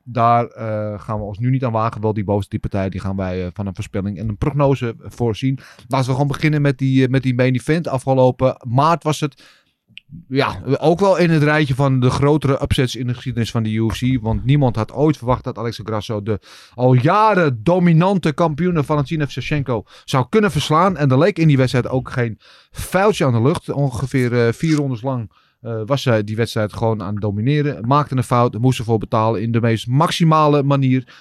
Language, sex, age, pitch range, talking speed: Dutch, male, 30-49, 110-140 Hz, 210 wpm